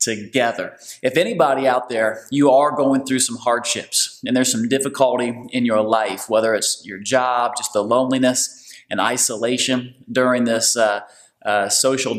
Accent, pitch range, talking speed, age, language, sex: American, 120-140 Hz, 160 wpm, 30-49, English, male